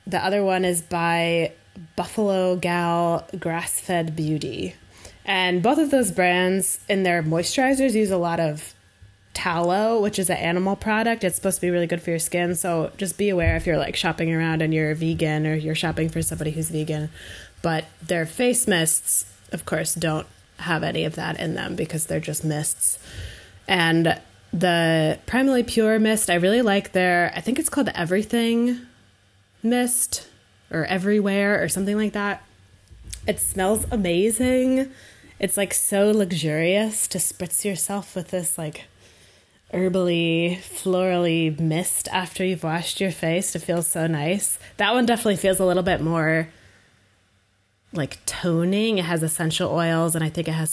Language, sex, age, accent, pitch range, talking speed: English, female, 20-39, American, 160-195 Hz, 165 wpm